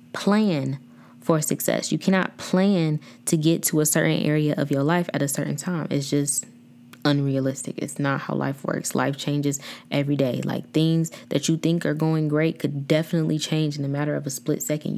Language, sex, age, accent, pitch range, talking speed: English, female, 20-39, American, 145-170 Hz, 195 wpm